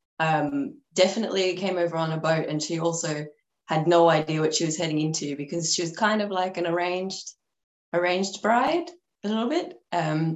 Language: English